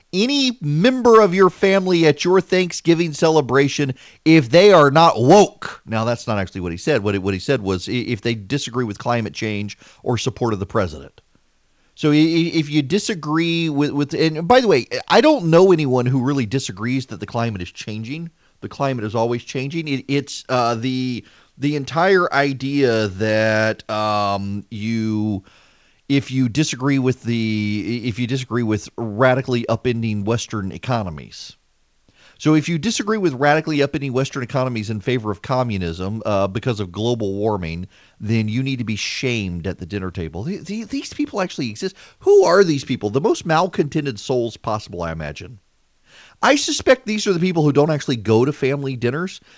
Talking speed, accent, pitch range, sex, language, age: 175 wpm, American, 110-155 Hz, male, English, 40-59